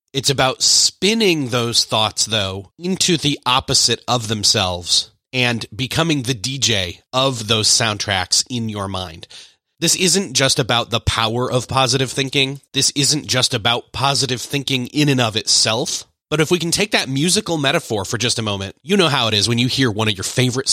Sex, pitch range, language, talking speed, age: male, 110-140 Hz, English, 185 wpm, 30-49